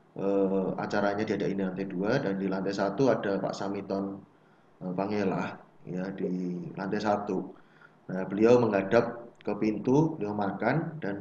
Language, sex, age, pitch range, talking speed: Indonesian, male, 20-39, 100-115 Hz, 145 wpm